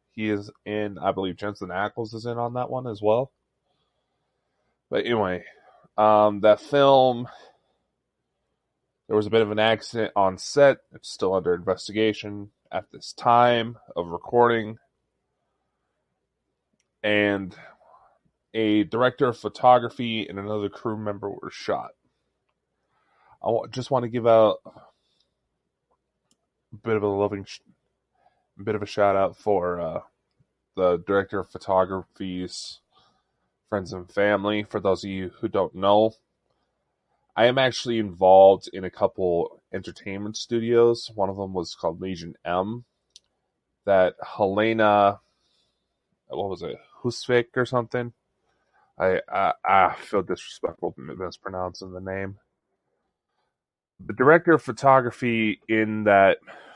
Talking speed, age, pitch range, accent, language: 125 wpm, 20-39, 95-120 Hz, American, English